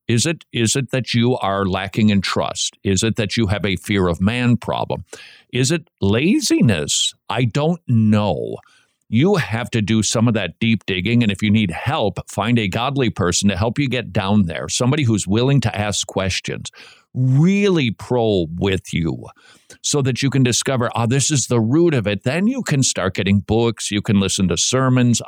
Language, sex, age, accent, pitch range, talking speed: English, male, 50-69, American, 105-140 Hz, 200 wpm